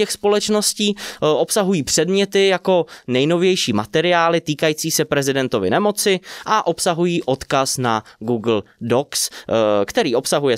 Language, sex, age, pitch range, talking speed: Czech, male, 20-39, 125-200 Hz, 100 wpm